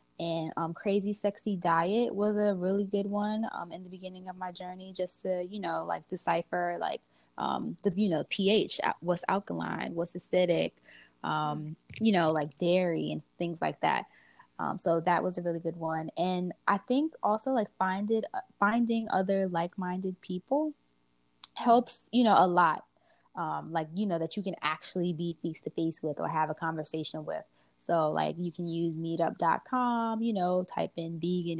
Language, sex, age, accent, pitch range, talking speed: English, female, 20-39, American, 165-195 Hz, 170 wpm